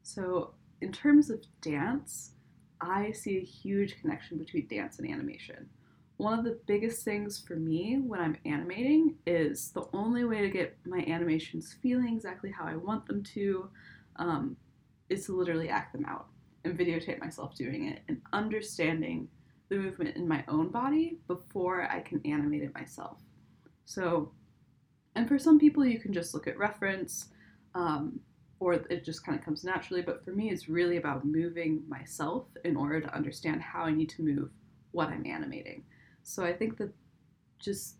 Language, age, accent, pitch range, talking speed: English, 10-29, American, 160-215 Hz, 170 wpm